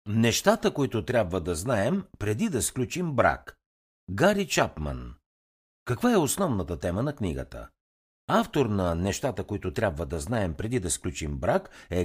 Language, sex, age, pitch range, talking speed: Bulgarian, male, 60-79, 85-135 Hz, 145 wpm